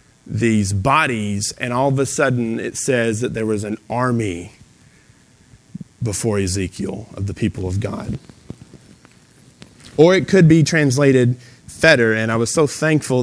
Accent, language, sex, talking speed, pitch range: American, English, male, 145 wpm, 120-160 Hz